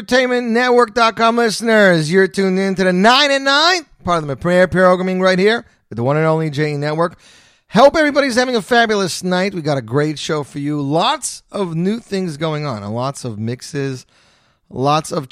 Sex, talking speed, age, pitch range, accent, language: male, 190 wpm, 30-49, 115-180 Hz, American, English